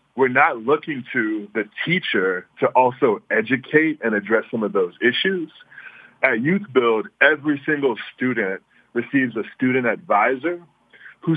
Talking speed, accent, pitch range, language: 130 wpm, American, 120-155 Hz, English